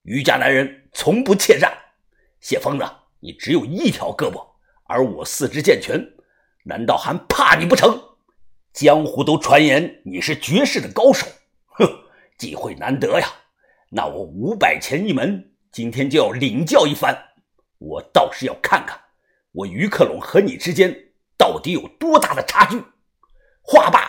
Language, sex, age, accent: Chinese, male, 50-69, native